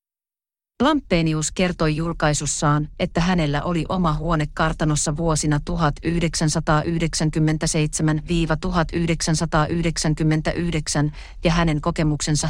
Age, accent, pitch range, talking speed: 40-59, native, 155-185 Hz, 65 wpm